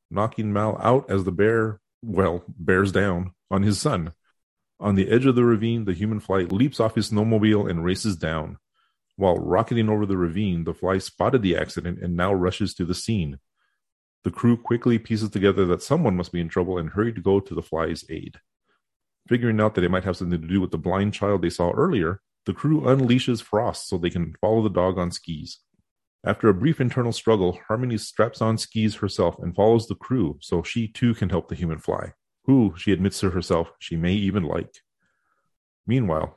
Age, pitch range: 30-49, 90-110 Hz